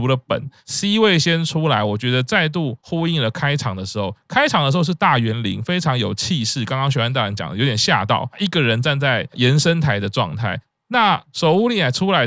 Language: Chinese